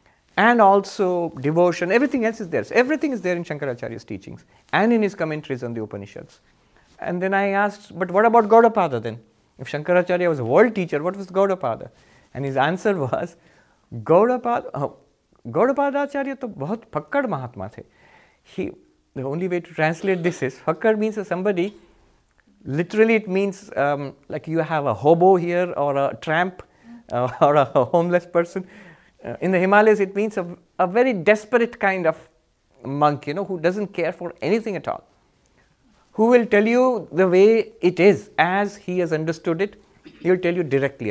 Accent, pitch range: Indian, 135-200 Hz